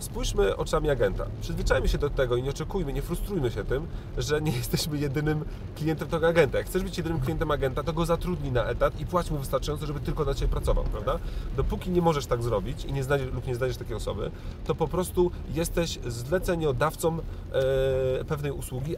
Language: Polish